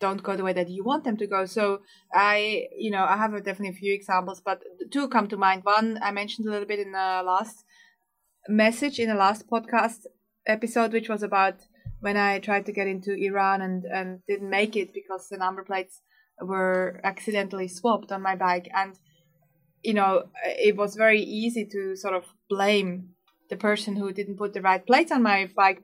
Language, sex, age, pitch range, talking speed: English, female, 20-39, 195-235 Hz, 205 wpm